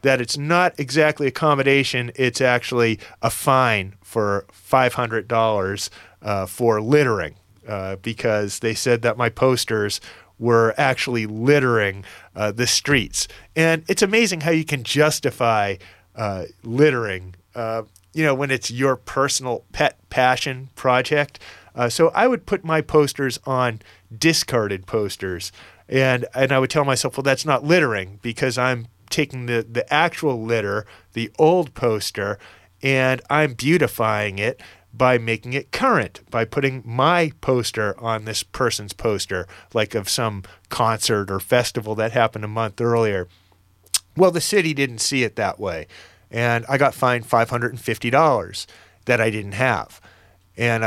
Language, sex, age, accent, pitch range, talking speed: English, male, 30-49, American, 105-135 Hz, 145 wpm